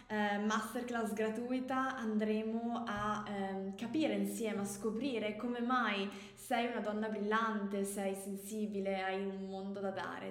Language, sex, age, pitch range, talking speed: Italian, female, 20-39, 195-235 Hz, 135 wpm